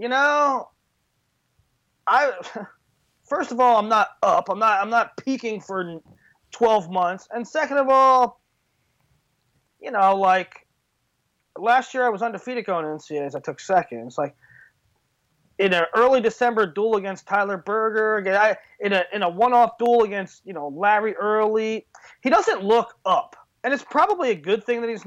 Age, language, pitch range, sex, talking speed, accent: 30-49, English, 195-250 Hz, male, 170 wpm, American